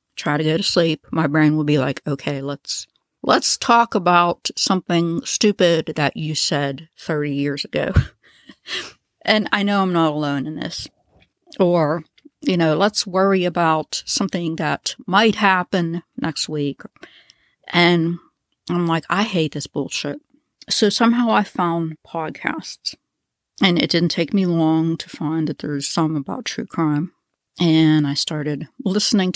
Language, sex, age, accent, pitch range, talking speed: English, female, 60-79, American, 150-190 Hz, 150 wpm